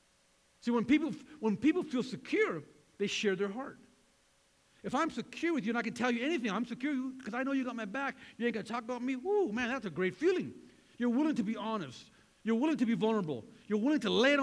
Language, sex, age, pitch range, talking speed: English, male, 50-69, 200-255 Hz, 245 wpm